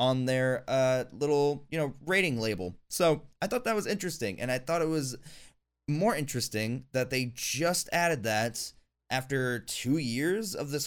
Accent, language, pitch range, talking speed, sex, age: American, English, 105-135 Hz, 170 wpm, male, 20-39